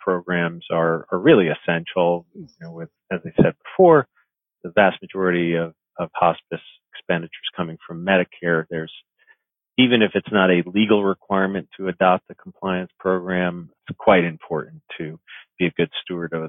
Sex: male